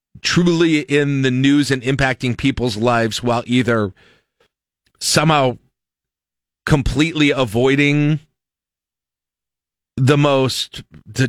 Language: English